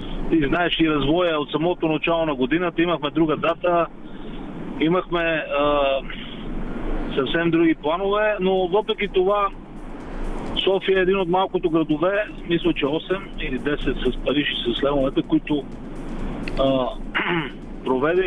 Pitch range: 135-170 Hz